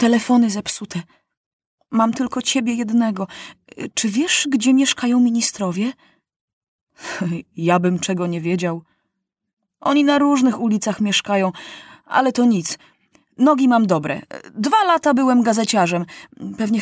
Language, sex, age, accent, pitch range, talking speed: Polish, female, 30-49, native, 180-270 Hz, 115 wpm